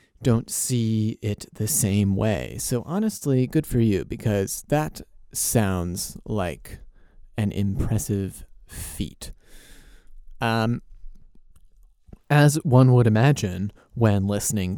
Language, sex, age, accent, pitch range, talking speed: English, male, 30-49, American, 100-120 Hz, 100 wpm